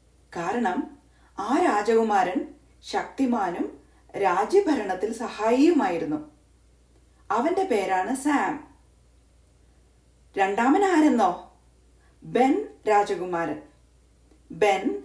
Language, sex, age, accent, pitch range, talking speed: Malayalam, female, 30-49, native, 195-300 Hz, 55 wpm